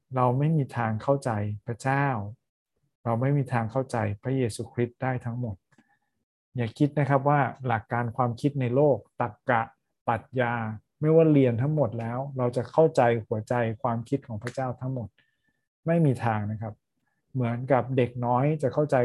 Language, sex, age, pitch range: Thai, male, 20-39, 115-135 Hz